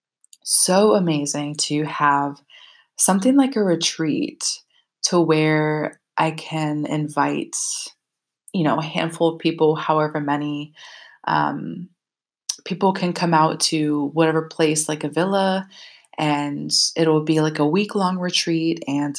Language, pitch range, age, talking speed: English, 145-170 Hz, 20-39, 130 wpm